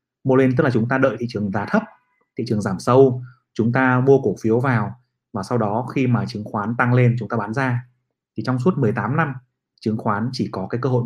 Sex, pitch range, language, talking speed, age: male, 115-130 Hz, Vietnamese, 250 wpm, 30-49